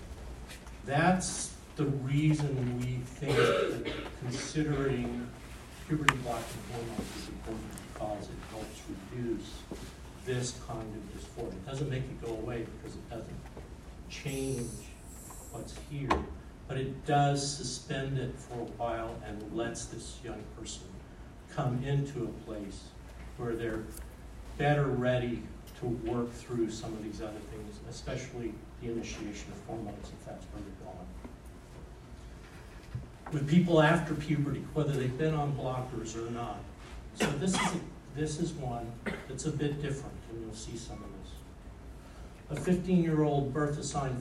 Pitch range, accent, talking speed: 105-140 Hz, American, 140 wpm